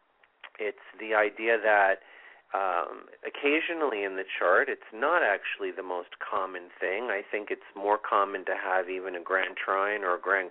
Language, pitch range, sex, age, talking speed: English, 90-110 Hz, male, 40-59, 170 wpm